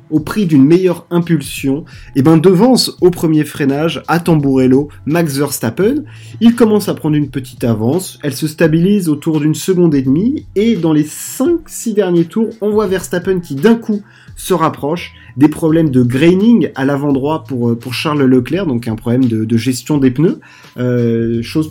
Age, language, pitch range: 30-49, French, 130-165 Hz